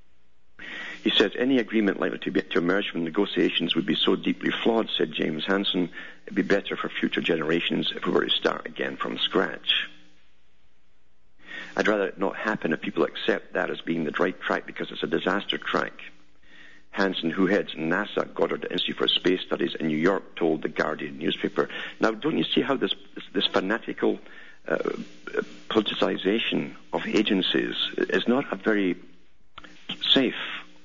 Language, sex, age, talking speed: English, male, 50-69, 165 wpm